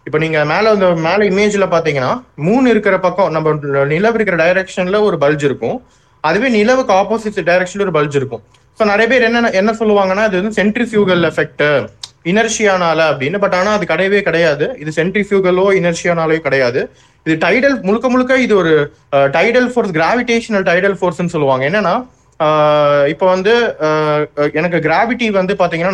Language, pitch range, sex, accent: Tamil, 155-205 Hz, male, native